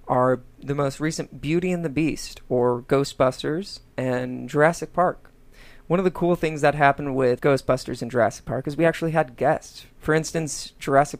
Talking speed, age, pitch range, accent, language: 175 wpm, 30-49, 130-165 Hz, American, English